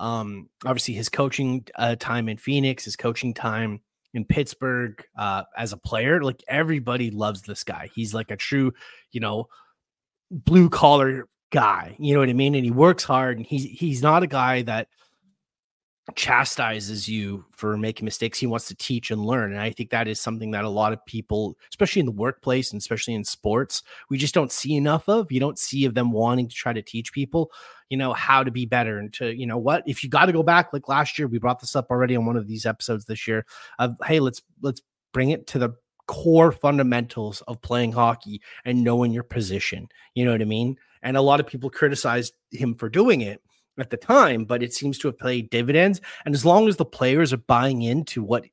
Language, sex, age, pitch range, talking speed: English, male, 30-49, 115-140 Hz, 220 wpm